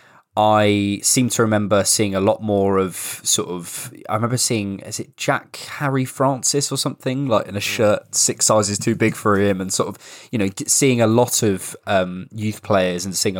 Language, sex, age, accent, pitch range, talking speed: English, male, 20-39, British, 95-115 Hz, 200 wpm